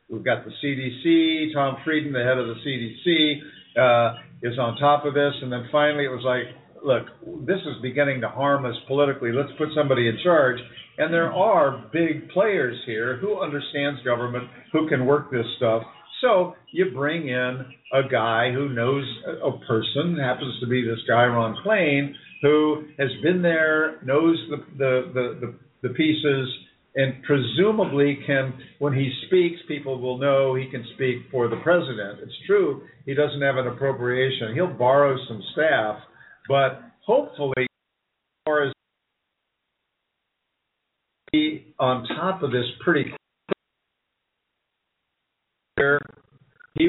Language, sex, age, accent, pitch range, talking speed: English, male, 50-69, American, 125-150 Hz, 150 wpm